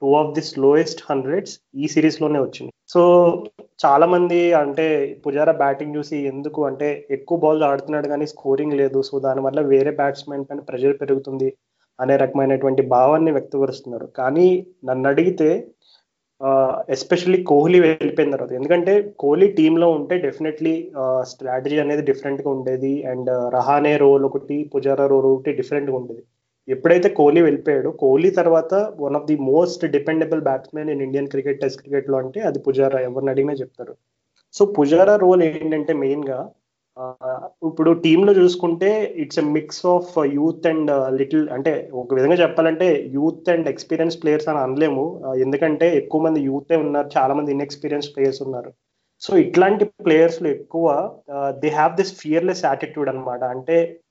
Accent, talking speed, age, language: native, 155 wpm, 20-39, Telugu